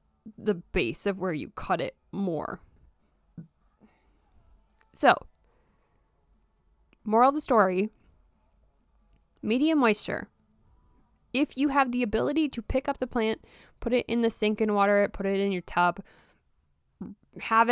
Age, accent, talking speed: 20-39, American, 130 wpm